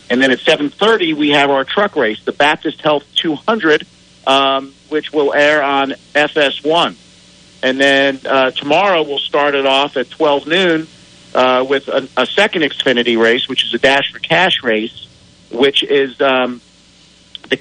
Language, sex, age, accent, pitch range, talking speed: English, male, 50-69, American, 130-150 Hz, 165 wpm